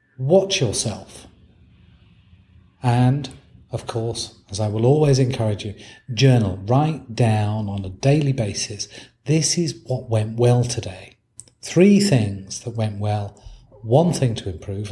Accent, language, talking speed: British, English, 135 wpm